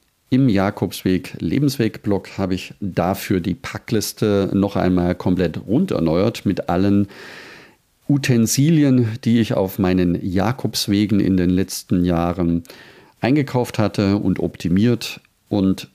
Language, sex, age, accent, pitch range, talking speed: German, male, 50-69, German, 90-115 Hz, 115 wpm